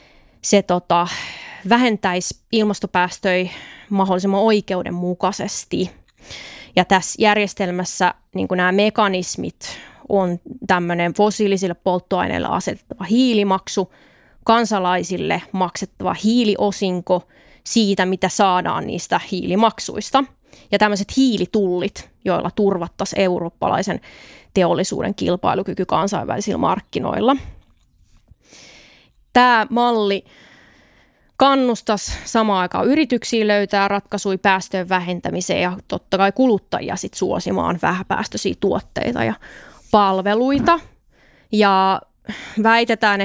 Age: 20-39